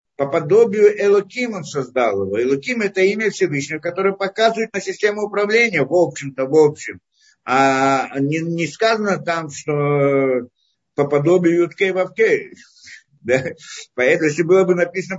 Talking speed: 140 wpm